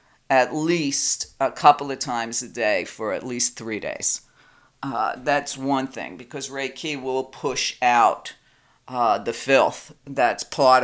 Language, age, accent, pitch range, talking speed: English, 50-69, American, 130-155 Hz, 150 wpm